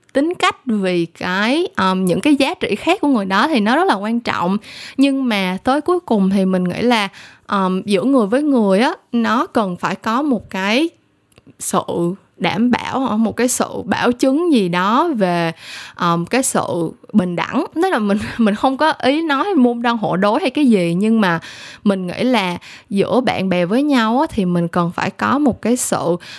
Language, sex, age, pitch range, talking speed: Vietnamese, female, 10-29, 185-260 Hz, 195 wpm